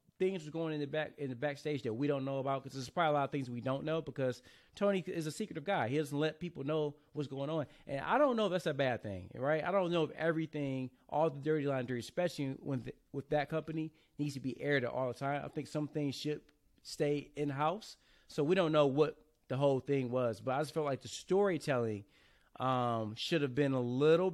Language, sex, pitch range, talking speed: English, male, 135-165 Hz, 245 wpm